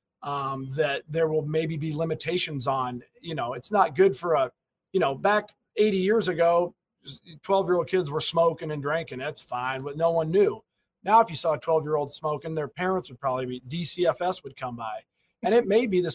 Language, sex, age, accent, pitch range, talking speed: English, male, 30-49, American, 145-185 Hz, 215 wpm